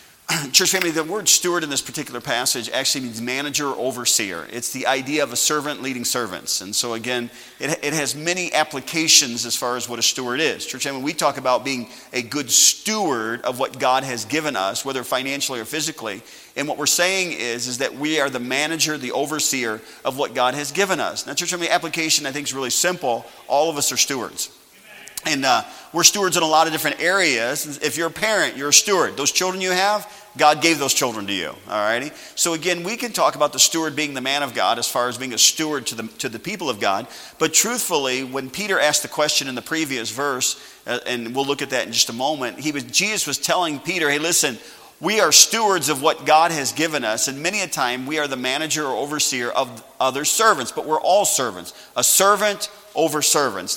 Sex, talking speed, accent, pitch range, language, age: male, 225 wpm, American, 130-160 Hz, English, 40-59